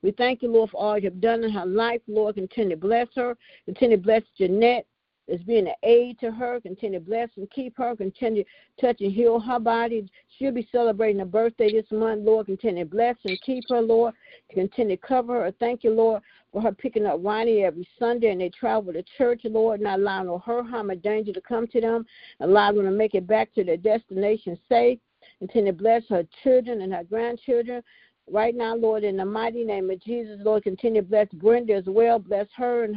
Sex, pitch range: female, 200-235 Hz